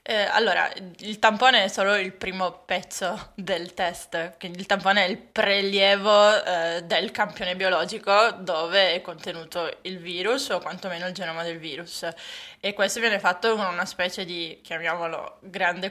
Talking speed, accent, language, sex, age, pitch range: 160 wpm, native, Italian, female, 20-39, 180-210 Hz